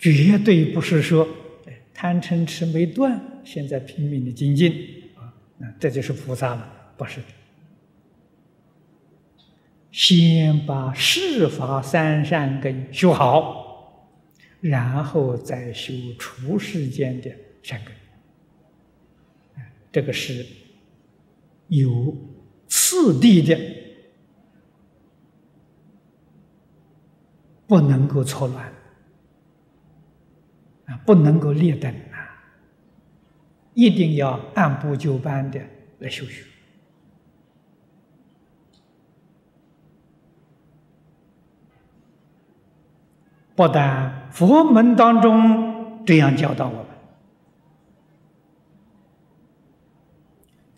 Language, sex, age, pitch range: Chinese, male, 60-79, 135-175 Hz